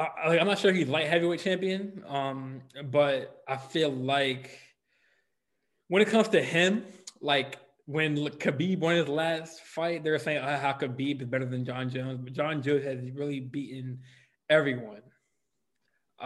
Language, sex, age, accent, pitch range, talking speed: English, male, 20-39, American, 135-170 Hz, 155 wpm